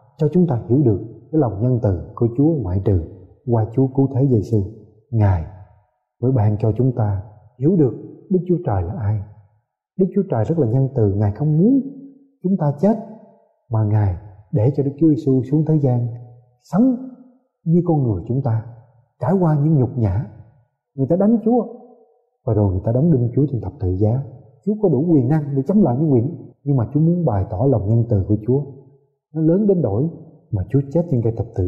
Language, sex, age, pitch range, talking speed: Vietnamese, male, 20-39, 110-160 Hz, 210 wpm